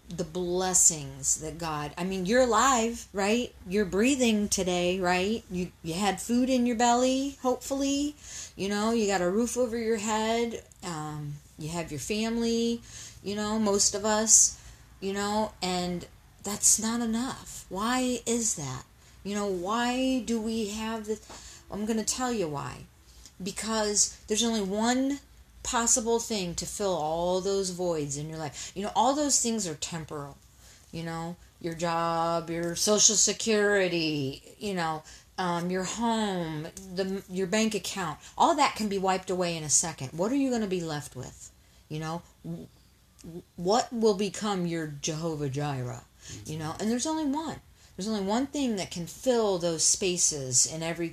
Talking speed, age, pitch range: 165 wpm, 40-59, 165-225 Hz